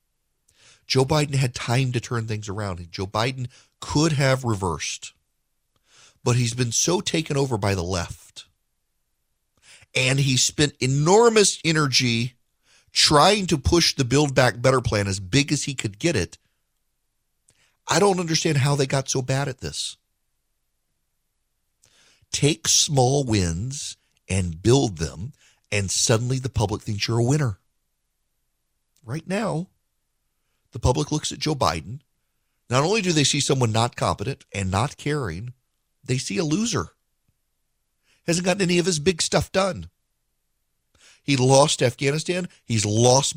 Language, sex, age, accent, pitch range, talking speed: English, male, 40-59, American, 110-150 Hz, 140 wpm